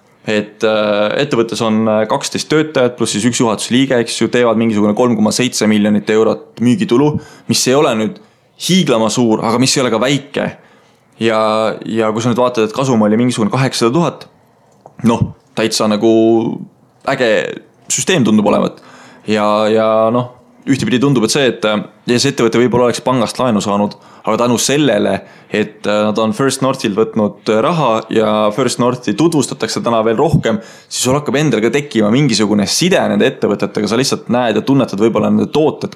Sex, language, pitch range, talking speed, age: male, English, 105-120 Hz, 165 wpm, 20-39